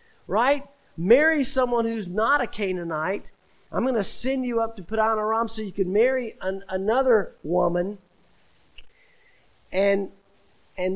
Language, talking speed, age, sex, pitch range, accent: English, 140 wpm, 50-69, male, 160-215 Hz, American